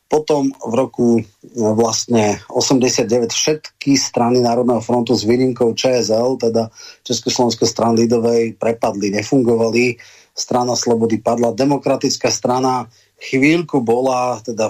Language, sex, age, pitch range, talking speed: Slovak, male, 30-49, 115-125 Hz, 105 wpm